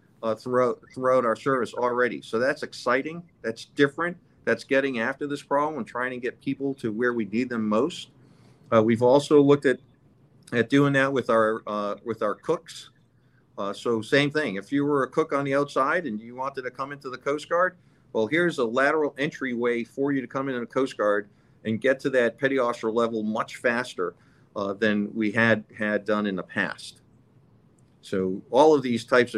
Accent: American